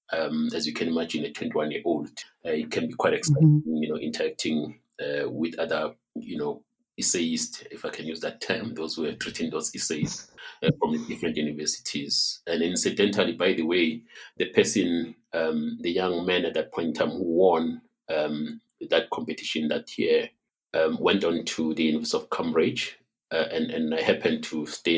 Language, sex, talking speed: English, male, 185 wpm